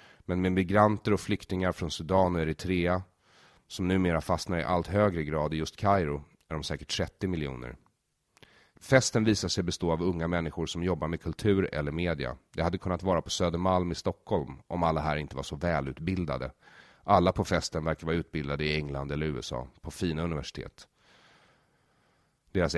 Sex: male